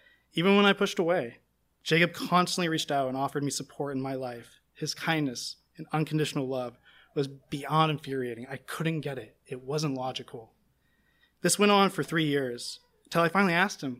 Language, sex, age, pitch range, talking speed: English, male, 20-39, 135-165 Hz, 180 wpm